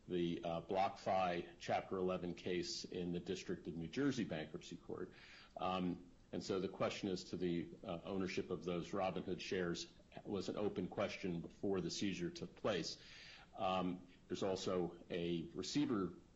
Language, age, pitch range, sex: English, 40-59, 85-95 Hz, male